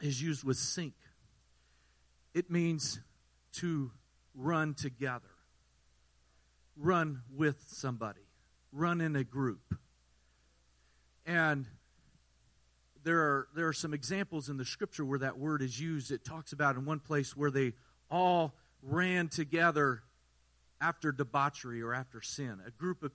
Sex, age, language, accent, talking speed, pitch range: male, 40-59, English, American, 130 wpm, 125-180 Hz